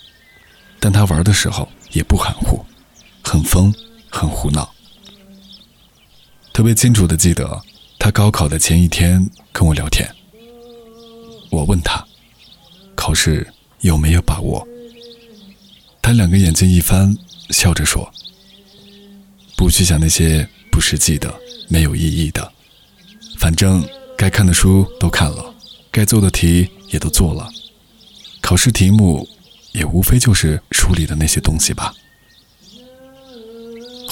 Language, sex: Chinese, male